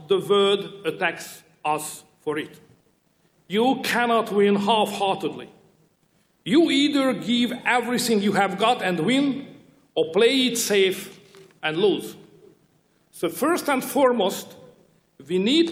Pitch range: 185-245 Hz